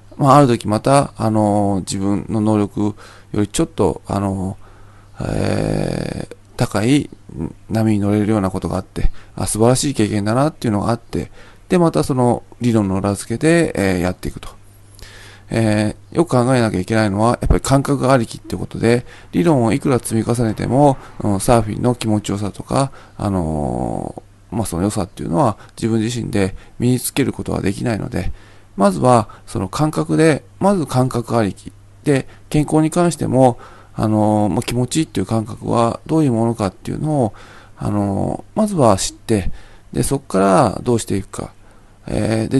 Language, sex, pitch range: Japanese, male, 100-125 Hz